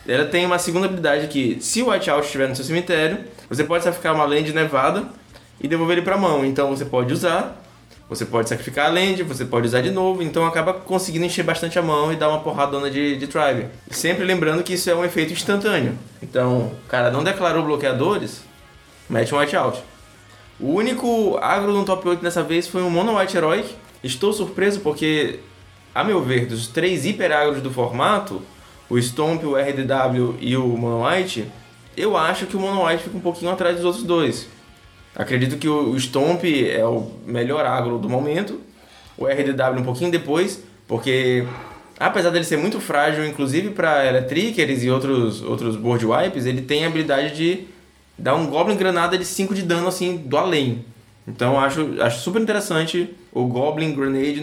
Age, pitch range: 20-39, 130-175 Hz